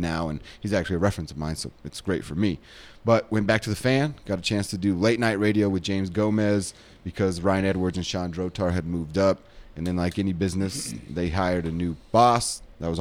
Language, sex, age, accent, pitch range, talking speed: English, male, 30-49, American, 85-110 Hz, 235 wpm